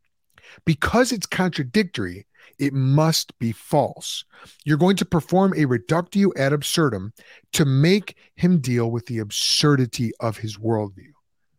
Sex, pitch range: male, 115-165 Hz